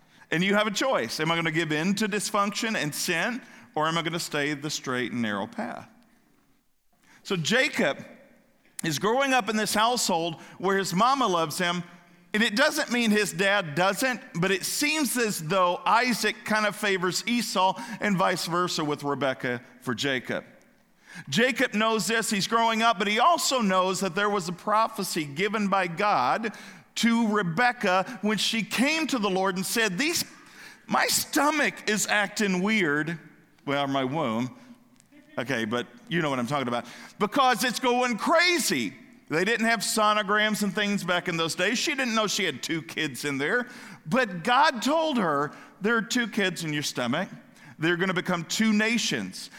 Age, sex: 50-69, male